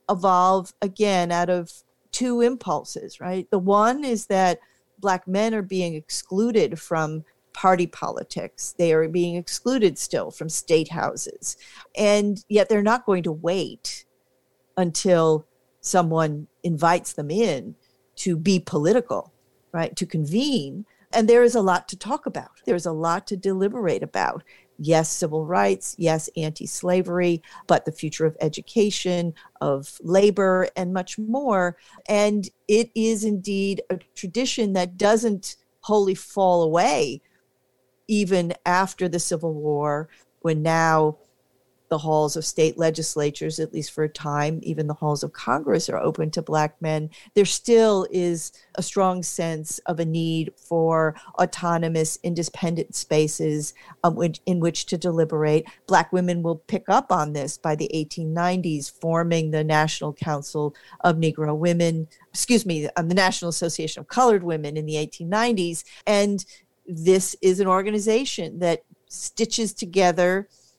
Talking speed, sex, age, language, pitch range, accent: 140 wpm, female, 40-59, English, 155-195 Hz, American